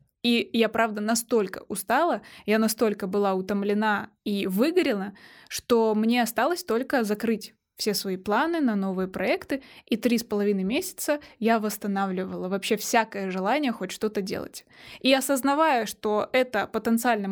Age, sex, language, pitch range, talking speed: 20-39, female, Russian, 210-260 Hz, 140 wpm